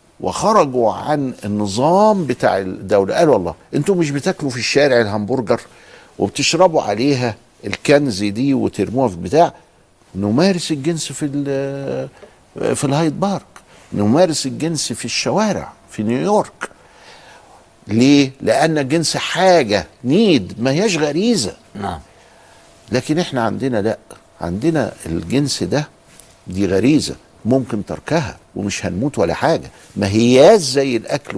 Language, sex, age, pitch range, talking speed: Arabic, male, 60-79, 105-145 Hz, 115 wpm